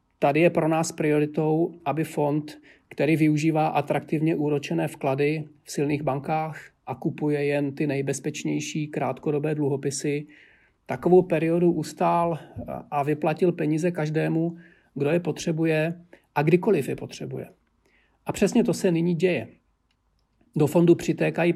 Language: Czech